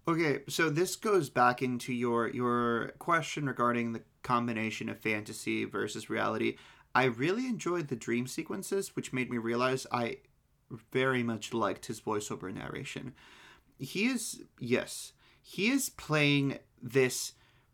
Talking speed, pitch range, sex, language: 135 wpm, 120-180 Hz, male, English